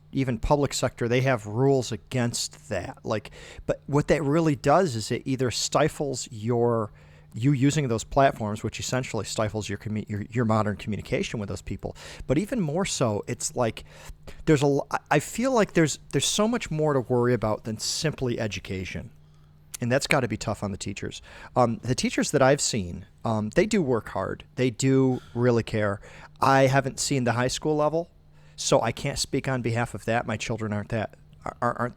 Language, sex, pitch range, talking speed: English, male, 100-135 Hz, 190 wpm